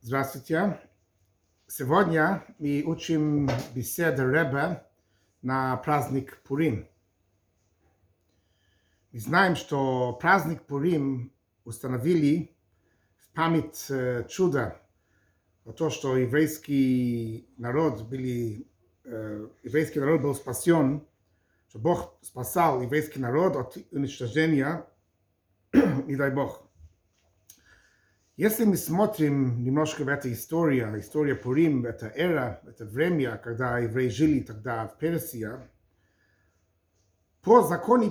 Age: 60-79